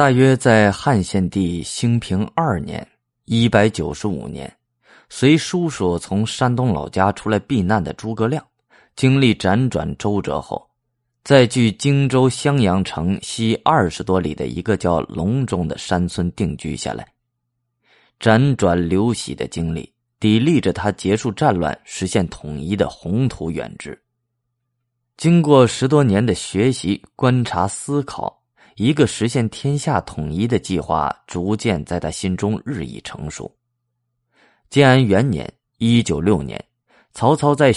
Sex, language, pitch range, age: male, Chinese, 90-125 Hz, 20-39